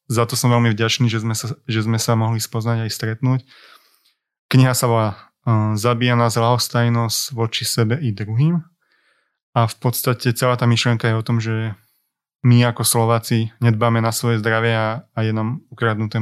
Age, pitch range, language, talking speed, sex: 20-39, 110-125 Hz, Slovak, 165 wpm, male